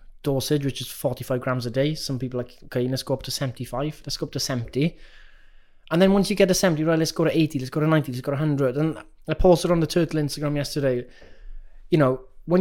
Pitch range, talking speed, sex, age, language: 120-150 Hz, 245 wpm, male, 20-39, English